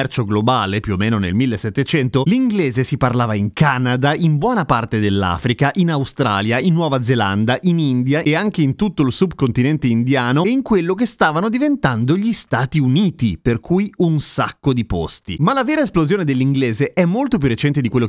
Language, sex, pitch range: Italian, male, 120-160 Hz